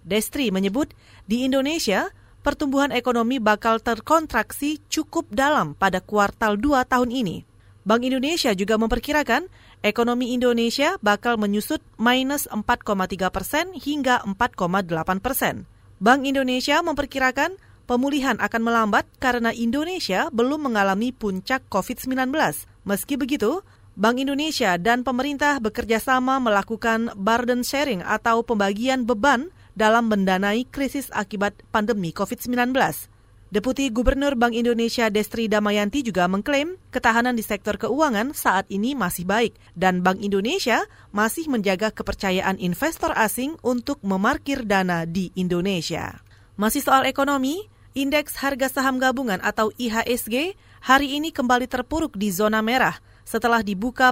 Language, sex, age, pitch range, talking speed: Indonesian, female, 30-49, 210-270 Hz, 120 wpm